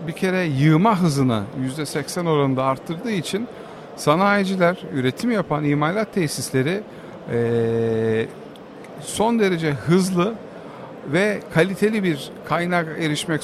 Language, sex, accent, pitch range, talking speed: Turkish, male, native, 130-180 Hz, 100 wpm